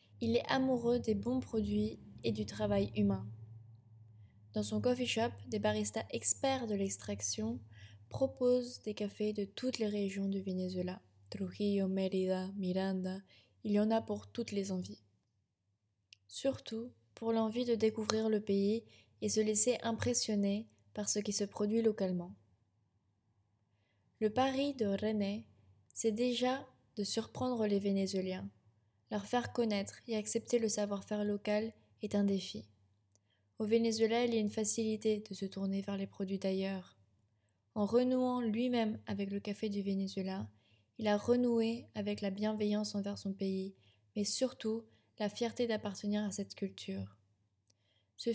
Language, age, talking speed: French, 20-39, 145 wpm